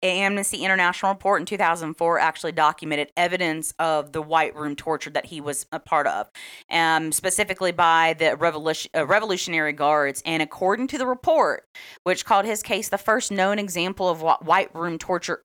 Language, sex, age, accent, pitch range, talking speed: English, female, 30-49, American, 165-210 Hz, 165 wpm